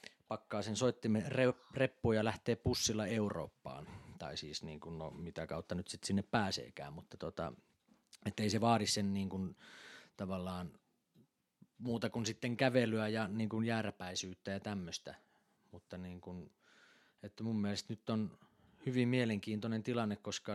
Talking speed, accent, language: 135 wpm, native, Finnish